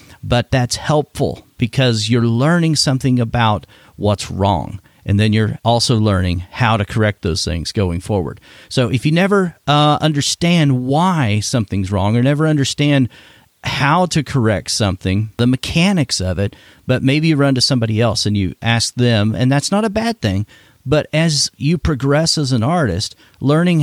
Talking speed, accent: 170 wpm, American